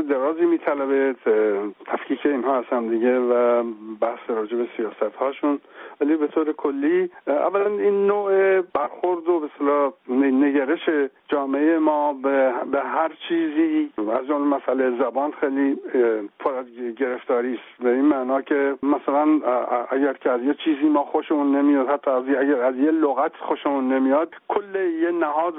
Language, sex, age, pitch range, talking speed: Persian, male, 60-79, 135-180 Hz, 140 wpm